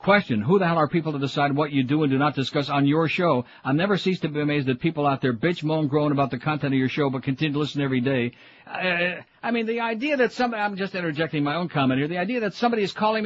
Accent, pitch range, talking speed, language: American, 150-190 Hz, 275 wpm, English